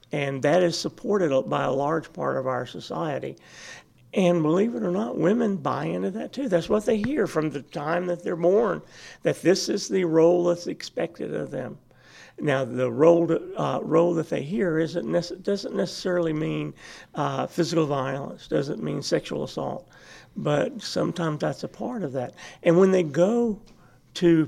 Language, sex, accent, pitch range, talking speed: English, male, American, 145-185 Hz, 175 wpm